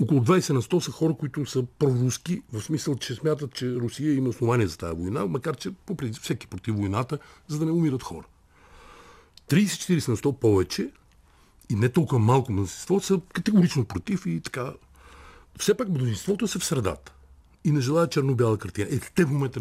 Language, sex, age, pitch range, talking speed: Bulgarian, male, 60-79, 105-155 Hz, 180 wpm